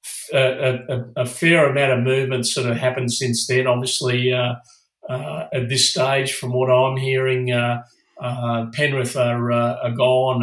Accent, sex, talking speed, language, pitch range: Australian, male, 165 wpm, English, 125-130 Hz